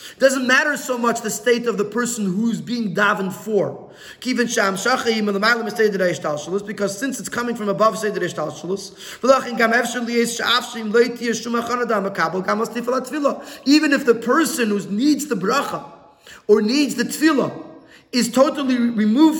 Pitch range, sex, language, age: 210-265 Hz, male, English, 30-49